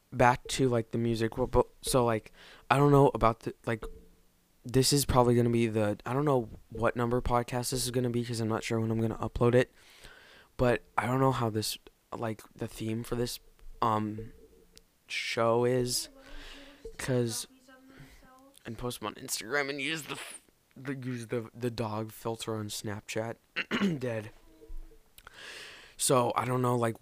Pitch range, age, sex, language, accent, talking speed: 110-125 Hz, 20-39, male, English, American, 175 wpm